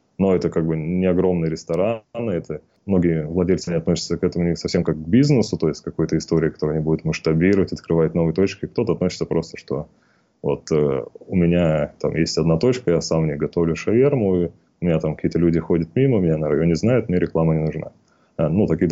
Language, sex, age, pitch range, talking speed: Russian, male, 20-39, 80-95 Hz, 215 wpm